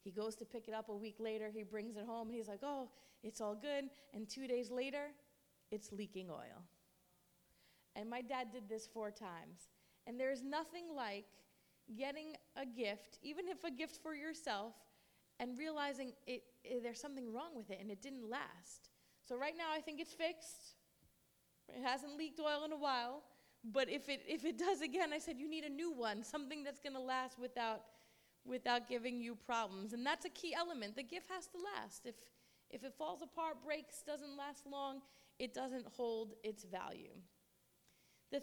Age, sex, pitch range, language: 30-49, female, 220-285 Hz, English